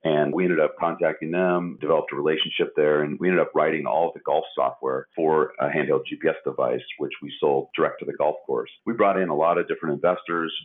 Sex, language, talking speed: male, English, 230 wpm